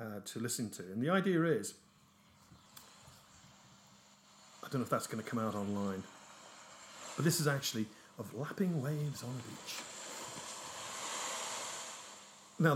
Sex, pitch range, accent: male, 115-155 Hz, British